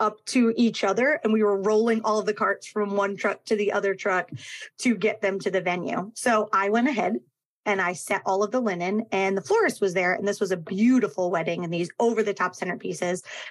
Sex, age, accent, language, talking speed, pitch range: female, 30-49, American, English, 235 wpm, 195-225 Hz